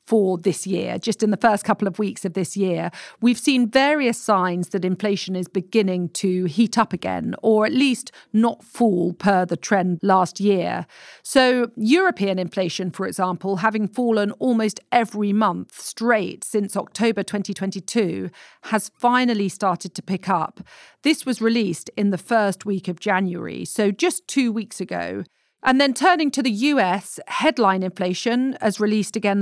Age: 40-59